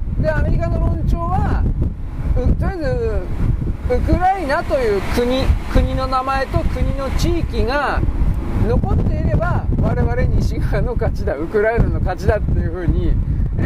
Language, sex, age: Japanese, male, 40-59